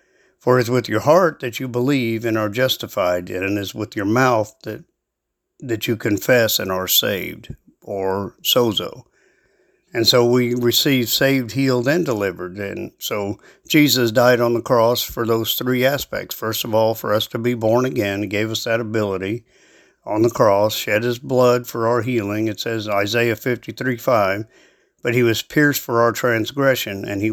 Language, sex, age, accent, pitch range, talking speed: English, male, 50-69, American, 105-125 Hz, 180 wpm